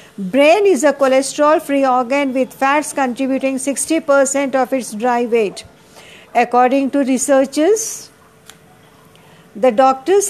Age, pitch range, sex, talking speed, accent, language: 50-69, 245-280 Hz, female, 110 wpm, native, Hindi